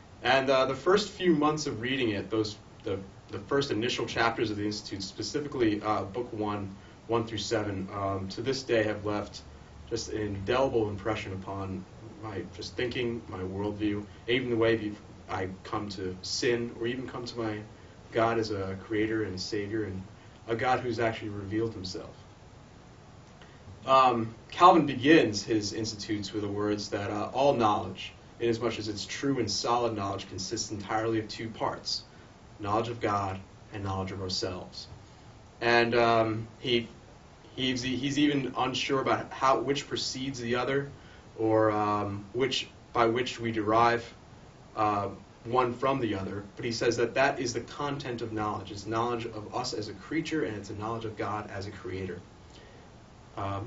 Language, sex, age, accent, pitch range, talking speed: English, male, 30-49, American, 105-120 Hz, 170 wpm